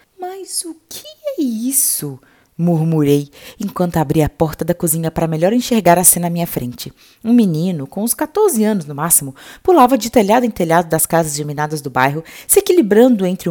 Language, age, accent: Portuguese, 20-39, Brazilian